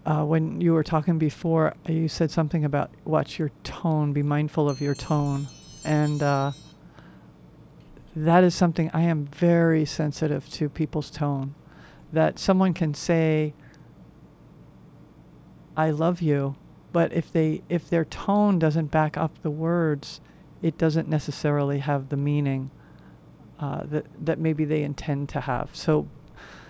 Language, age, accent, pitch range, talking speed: English, 50-69, American, 150-180 Hz, 140 wpm